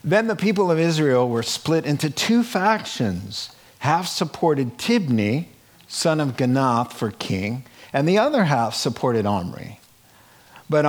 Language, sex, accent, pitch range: English, male, American, 110-150 Hz